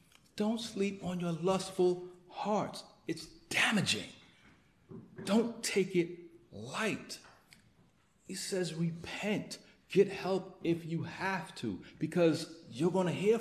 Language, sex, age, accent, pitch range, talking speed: English, male, 40-59, American, 160-215 Hz, 115 wpm